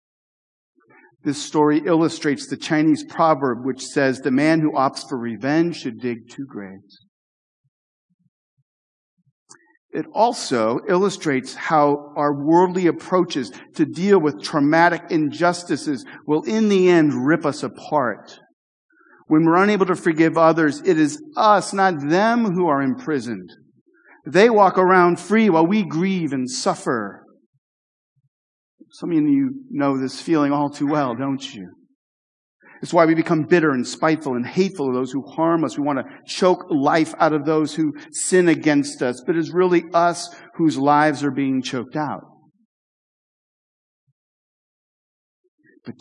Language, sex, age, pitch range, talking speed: English, male, 50-69, 140-195 Hz, 140 wpm